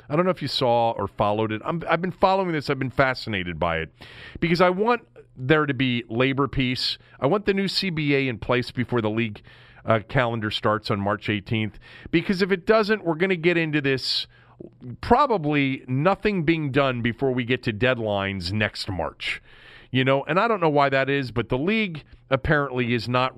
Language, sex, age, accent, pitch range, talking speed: English, male, 40-59, American, 110-145 Hz, 205 wpm